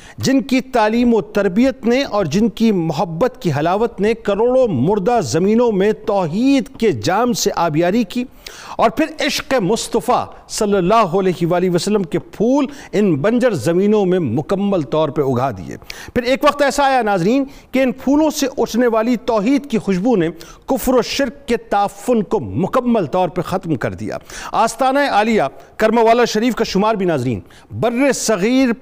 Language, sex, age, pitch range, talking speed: Urdu, male, 50-69, 195-250 Hz, 170 wpm